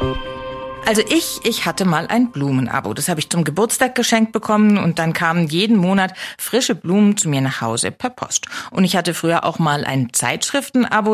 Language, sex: German, female